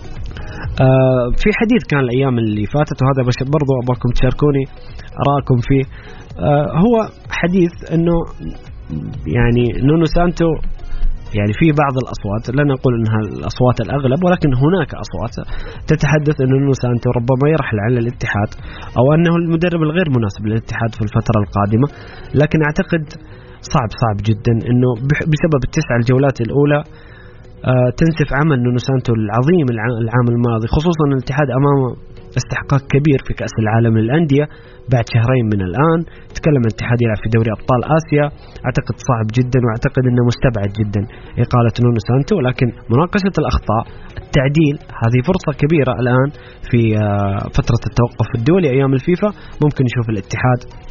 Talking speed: 130 wpm